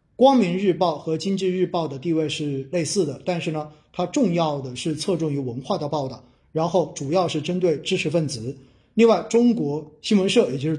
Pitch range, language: 145-190 Hz, Chinese